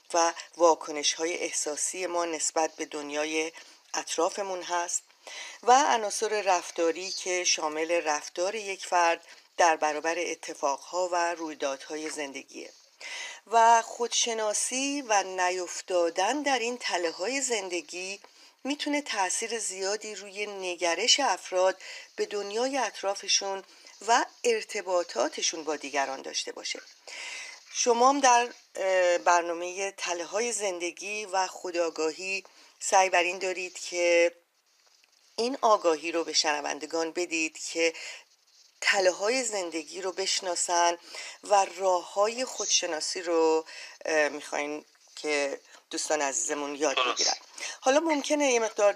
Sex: female